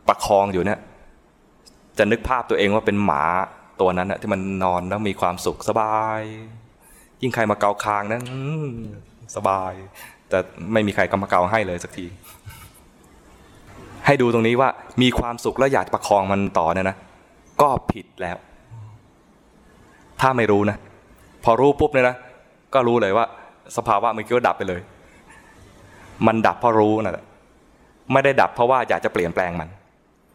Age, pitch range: 20-39, 95-115 Hz